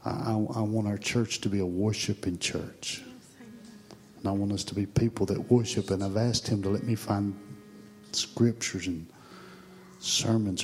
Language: English